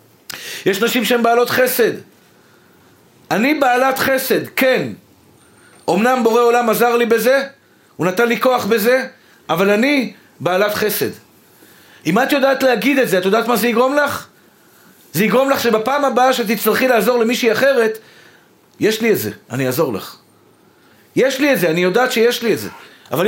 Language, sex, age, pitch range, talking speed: Hebrew, male, 40-59, 205-250 Hz, 160 wpm